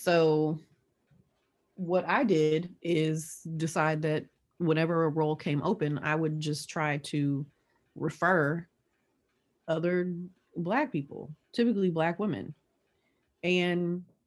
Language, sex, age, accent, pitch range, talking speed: English, female, 30-49, American, 155-185 Hz, 105 wpm